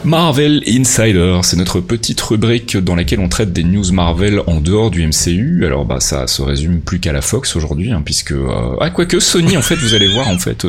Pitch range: 80-115 Hz